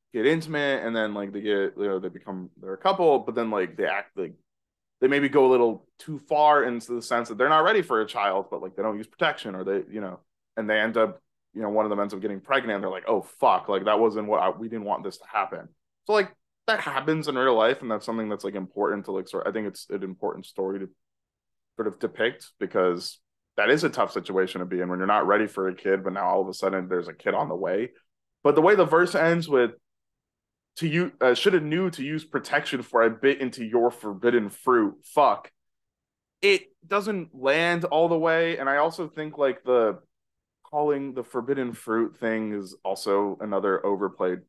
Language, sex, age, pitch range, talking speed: English, male, 20-39, 100-145 Hz, 235 wpm